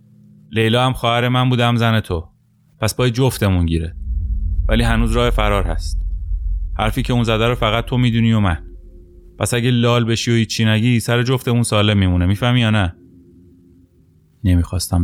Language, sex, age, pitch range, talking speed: Persian, male, 30-49, 90-120 Hz, 170 wpm